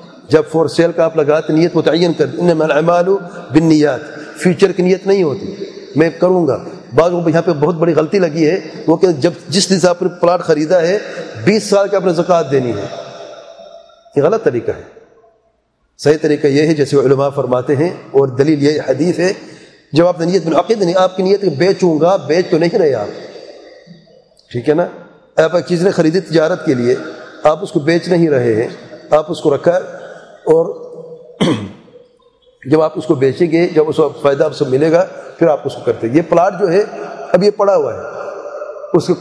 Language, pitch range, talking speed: English, 150-190 Hz, 170 wpm